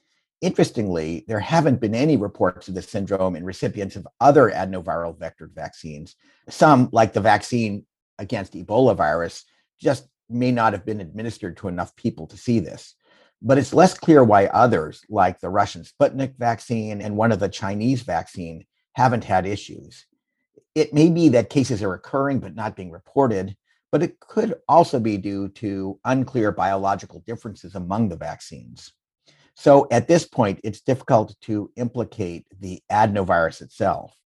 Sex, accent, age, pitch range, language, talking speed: male, American, 50-69, 95-130 Hz, English, 155 wpm